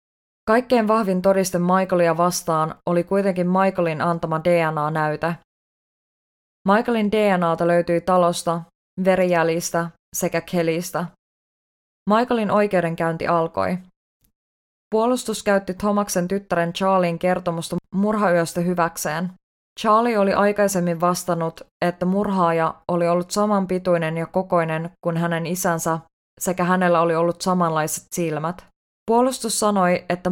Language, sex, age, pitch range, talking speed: English, female, 20-39, 165-190 Hz, 100 wpm